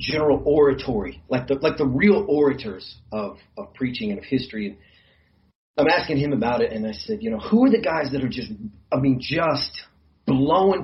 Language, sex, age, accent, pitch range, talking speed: English, male, 40-59, American, 105-155 Hz, 200 wpm